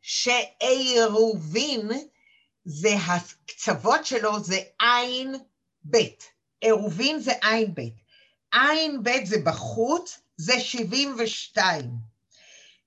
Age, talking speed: 50-69, 80 wpm